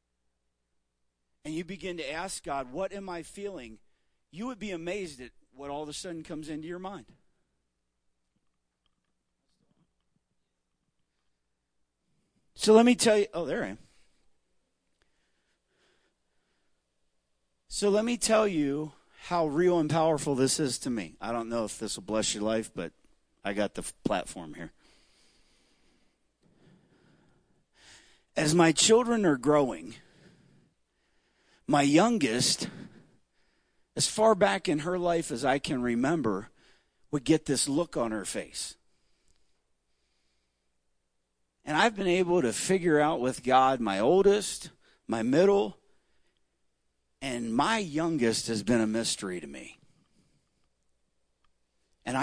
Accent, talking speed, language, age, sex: American, 125 wpm, English, 40-59, male